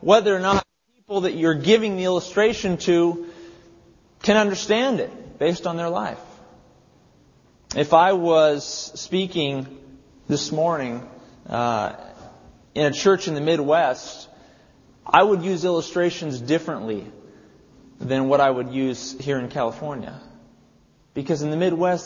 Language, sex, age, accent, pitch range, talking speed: English, male, 30-49, American, 135-180 Hz, 130 wpm